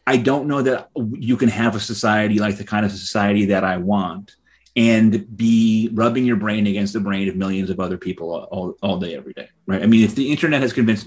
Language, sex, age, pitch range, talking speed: English, male, 30-49, 100-125 Hz, 235 wpm